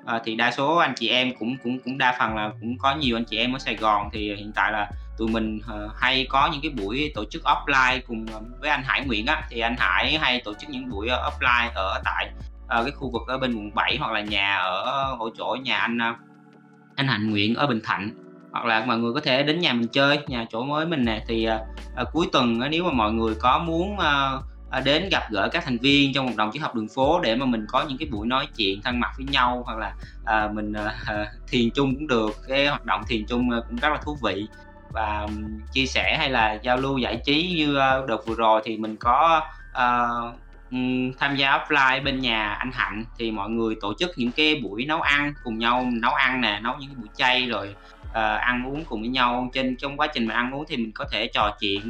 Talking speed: 250 wpm